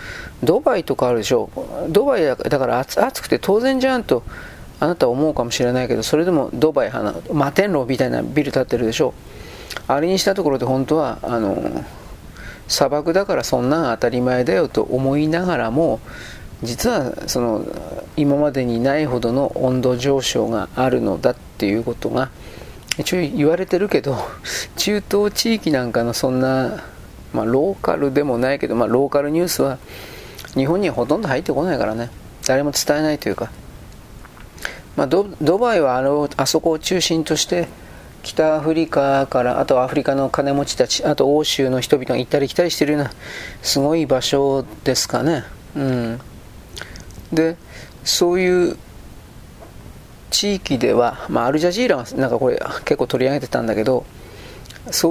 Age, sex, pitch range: 40-59, male, 125-165 Hz